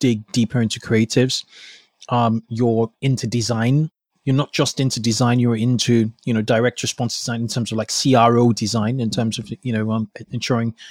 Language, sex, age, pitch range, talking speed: English, male, 20-39, 115-130 Hz, 180 wpm